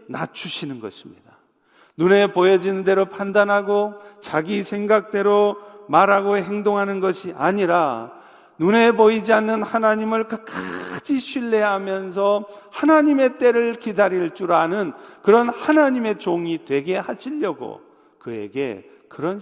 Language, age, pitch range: Korean, 40-59, 170-225 Hz